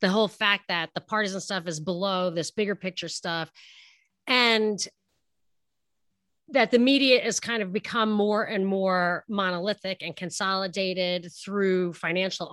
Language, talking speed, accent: English, 140 wpm, American